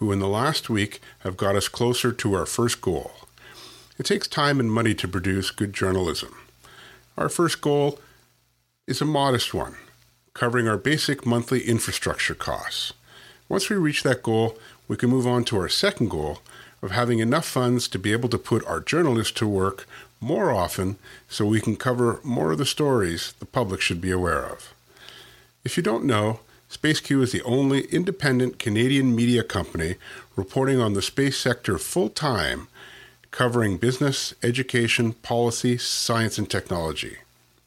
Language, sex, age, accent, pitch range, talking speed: English, male, 50-69, American, 105-130 Hz, 160 wpm